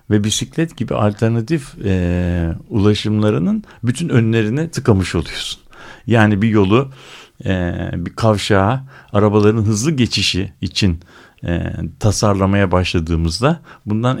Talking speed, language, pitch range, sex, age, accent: 100 wpm, Turkish, 90-125 Hz, male, 60-79, native